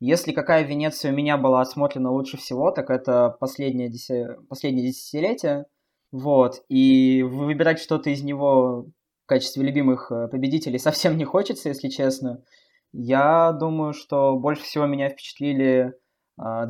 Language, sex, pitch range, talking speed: Russian, male, 125-145 Hz, 140 wpm